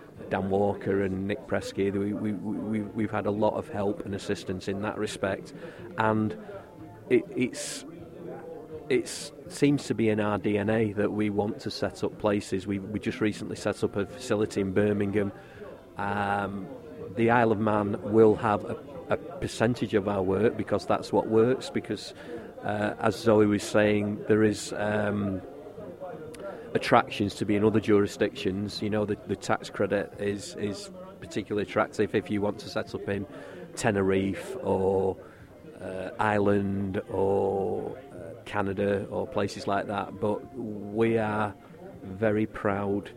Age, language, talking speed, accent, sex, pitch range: 40-59, English, 155 wpm, British, male, 100-105 Hz